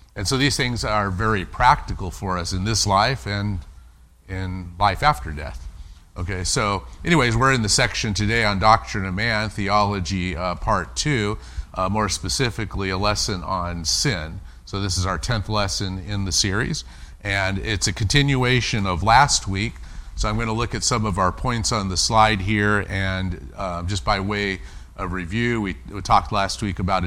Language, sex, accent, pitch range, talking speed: English, male, American, 85-110 Hz, 180 wpm